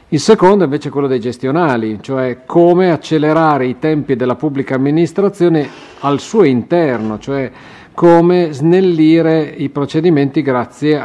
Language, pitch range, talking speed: Italian, 125-155 Hz, 135 wpm